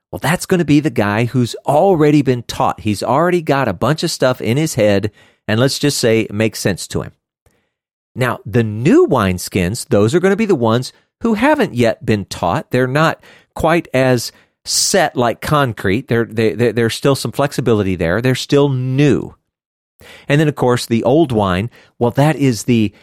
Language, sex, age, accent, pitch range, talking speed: English, male, 40-59, American, 110-165 Hz, 195 wpm